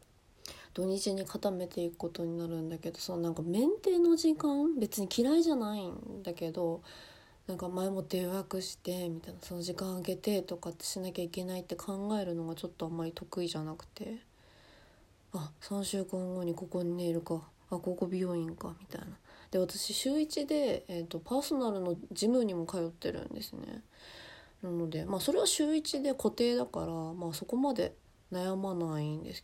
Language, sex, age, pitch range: Japanese, female, 20-39, 170-200 Hz